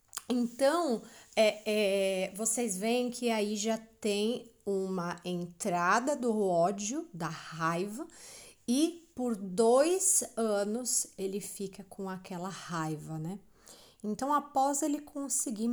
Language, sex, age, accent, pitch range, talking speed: Portuguese, female, 30-49, Brazilian, 185-230 Hz, 105 wpm